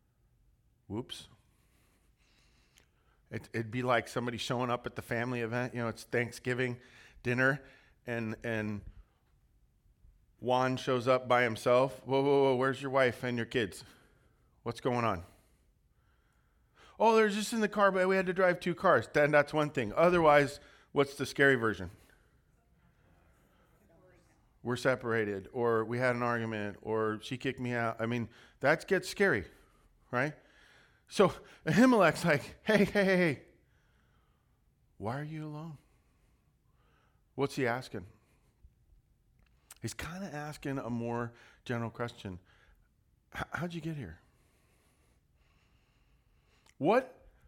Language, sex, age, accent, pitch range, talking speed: English, male, 40-59, American, 115-150 Hz, 130 wpm